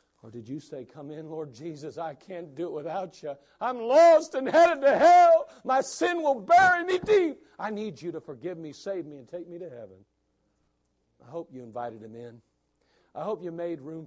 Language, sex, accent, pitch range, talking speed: English, male, American, 115-180 Hz, 215 wpm